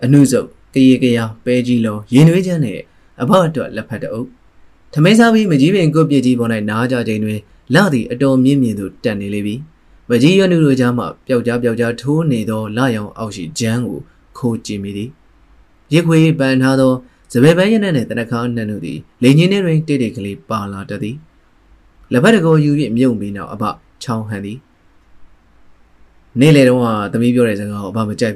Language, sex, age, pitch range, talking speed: English, male, 20-39, 100-135 Hz, 35 wpm